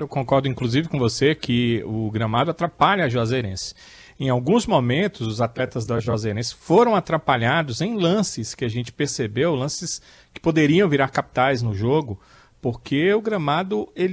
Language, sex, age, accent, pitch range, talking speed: Portuguese, male, 40-59, Brazilian, 125-170 Hz, 155 wpm